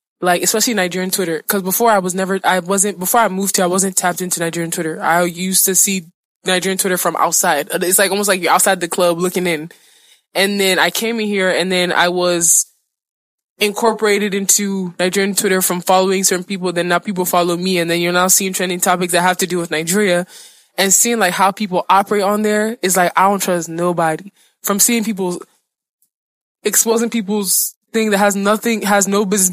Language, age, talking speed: English, 20-39, 205 wpm